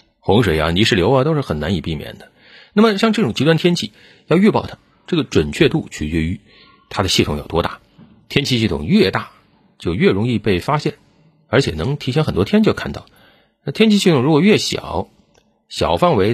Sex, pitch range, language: male, 90-140 Hz, Chinese